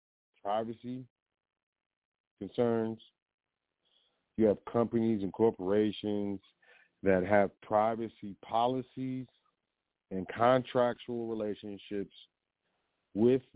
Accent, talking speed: American, 65 wpm